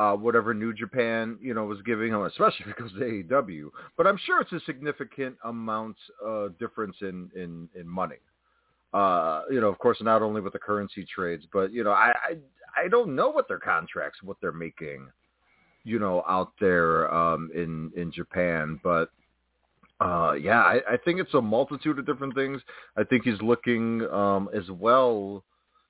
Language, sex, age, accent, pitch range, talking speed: English, male, 40-59, American, 100-135 Hz, 185 wpm